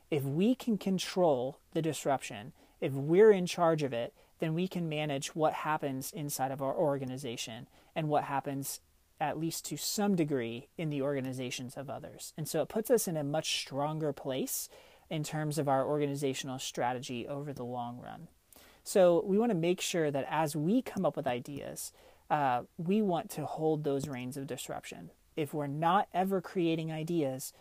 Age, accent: 30-49, American